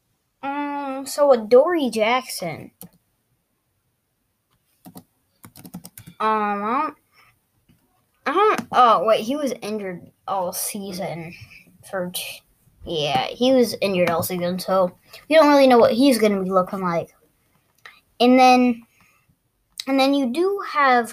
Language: English